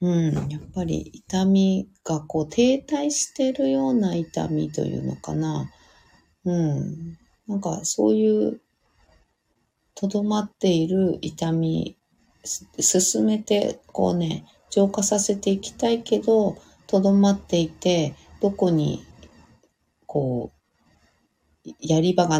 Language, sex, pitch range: Japanese, female, 115-195 Hz